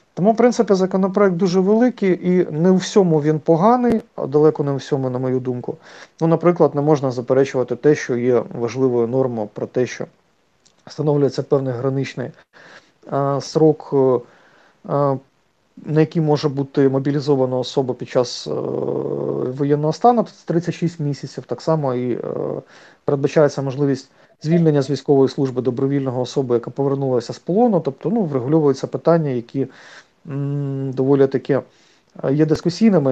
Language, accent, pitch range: Ukrainian, native, 135-165 Hz